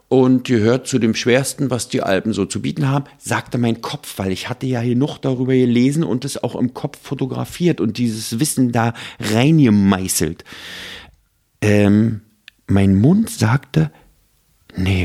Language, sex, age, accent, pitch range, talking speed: German, male, 50-69, German, 95-125 Hz, 150 wpm